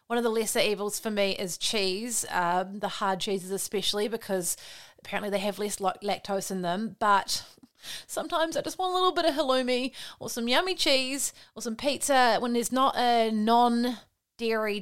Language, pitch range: English, 200-250 Hz